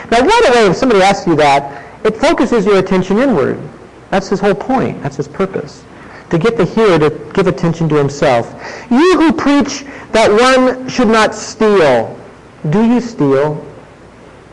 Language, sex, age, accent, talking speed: English, male, 50-69, American, 165 wpm